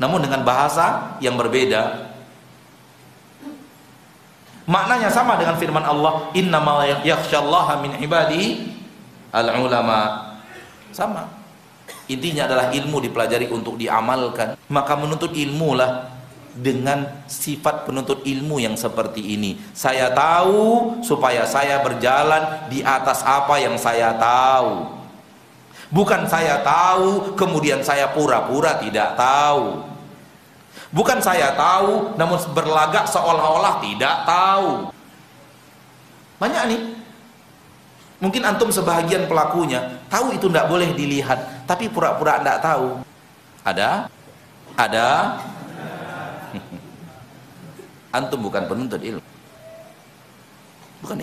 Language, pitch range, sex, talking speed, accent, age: Indonesian, 125-170 Hz, male, 95 wpm, native, 40-59